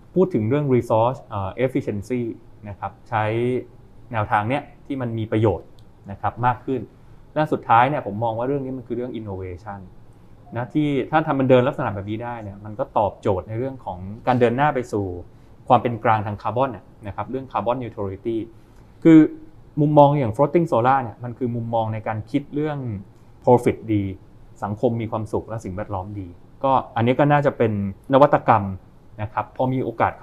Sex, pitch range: male, 105-130 Hz